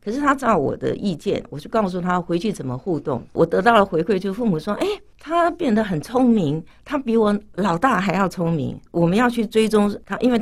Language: Chinese